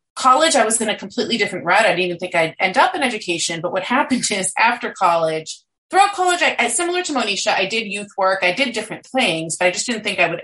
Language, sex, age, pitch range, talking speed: English, female, 30-49, 170-220 Hz, 245 wpm